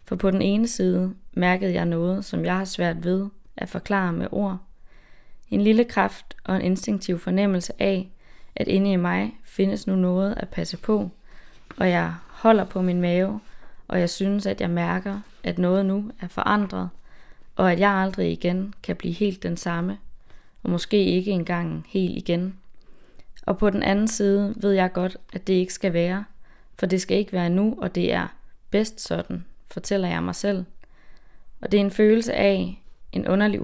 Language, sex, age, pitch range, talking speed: Danish, female, 20-39, 175-200 Hz, 185 wpm